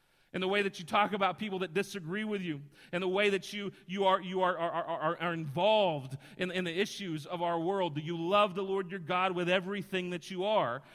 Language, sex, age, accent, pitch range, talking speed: English, male, 40-59, American, 180-205 Hz, 240 wpm